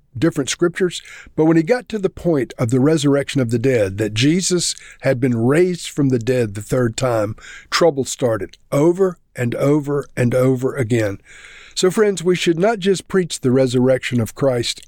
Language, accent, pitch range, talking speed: English, American, 125-165 Hz, 180 wpm